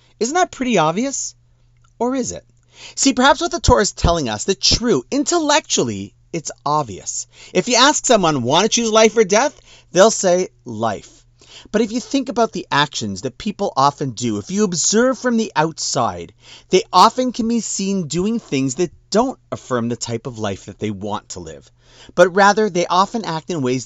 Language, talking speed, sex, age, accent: English, 190 wpm, male, 40-59, American